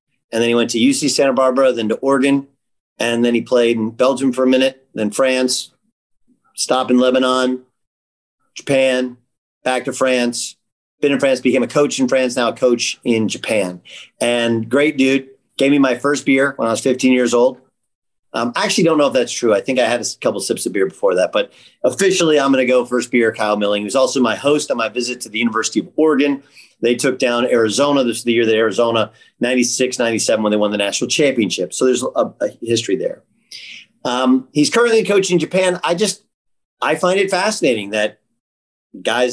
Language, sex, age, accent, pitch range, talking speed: English, male, 40-59, American, 115-135 Hz, 205 wpm